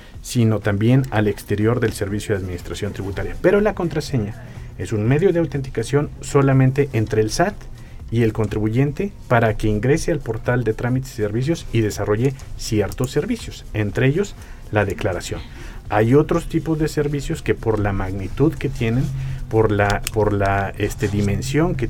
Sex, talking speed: male, 155 wpm